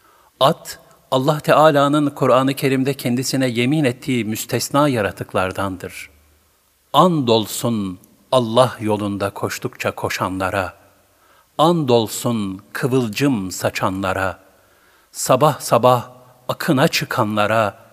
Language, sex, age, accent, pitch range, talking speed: Turkish, male, 60-79, native, 100-130 Hz, 80 wpm